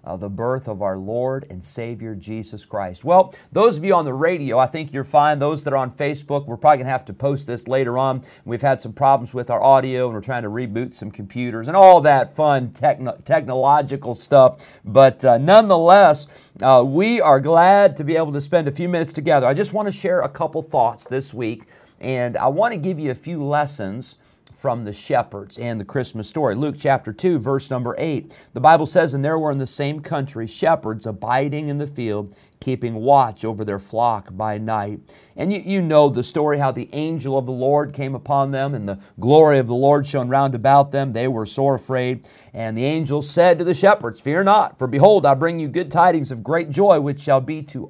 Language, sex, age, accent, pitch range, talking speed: English, male, 40-59, American, 120-150 Hz, 225 wpm